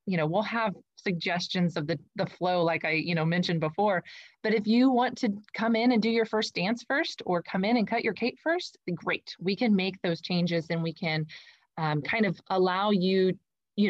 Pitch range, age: 170-225 Hz, 30-49